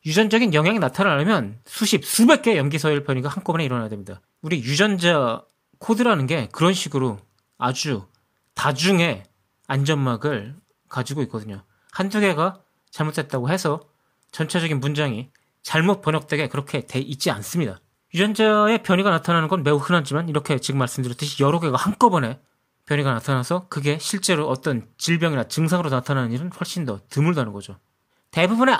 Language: Korean